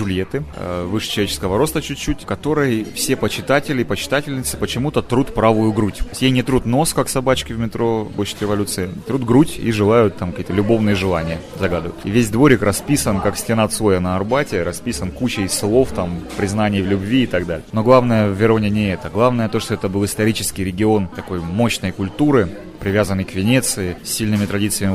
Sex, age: male, 30-49